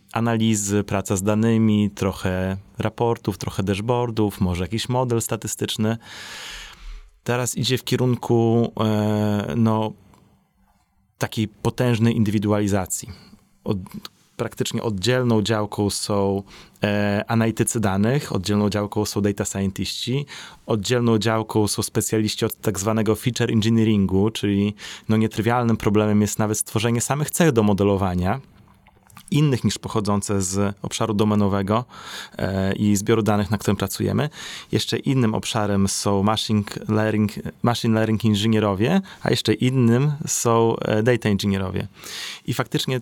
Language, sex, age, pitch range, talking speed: Polish, male, 30-49, 100-115 Hz, 110 wpm